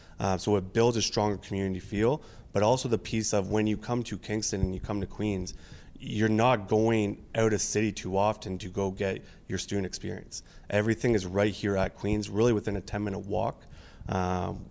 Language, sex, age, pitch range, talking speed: English, male, 20-39, 95-110 Hz, 200 wpm